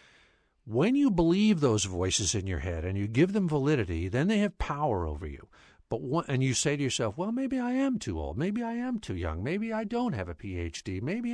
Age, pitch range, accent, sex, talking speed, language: 60-79, 105-160 Hz, American, male, 235 wpm, English